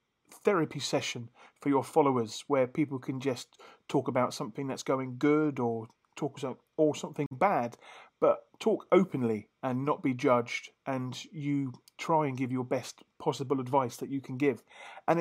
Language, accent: English, British